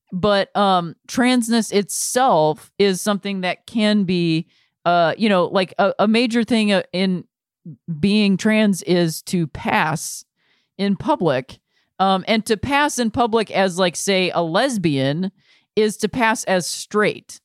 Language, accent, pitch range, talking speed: English, American, 170-220 Hz, 140 wpm